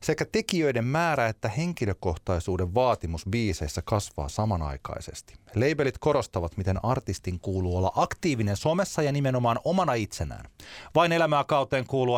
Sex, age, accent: male, 30-49, native